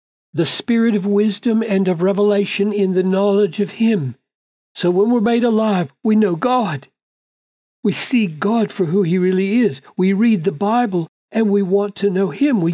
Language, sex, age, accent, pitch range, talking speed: English, male, 60-79, American, 175-215 Hz, 185 wpm